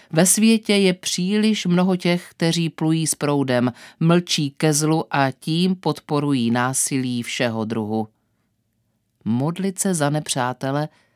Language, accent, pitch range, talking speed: Czech, native, 125-160 Hz, 125 wpm